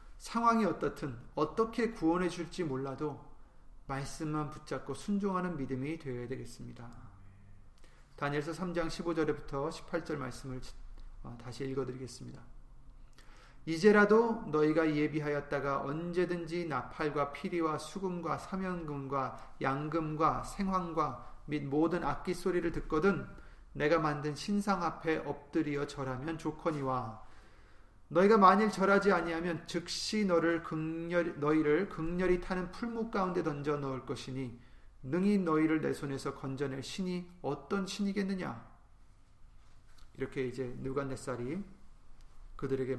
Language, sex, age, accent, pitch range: Korean, male, 40-59, native, 130-175 Hz